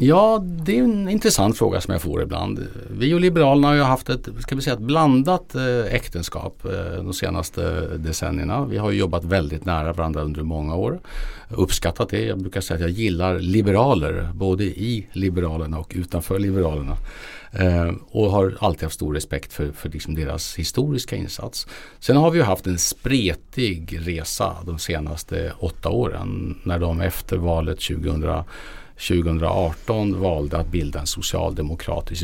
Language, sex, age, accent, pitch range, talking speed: Swedish, male, 50-69, Norwegian, 85-110 Hz, 155 wpm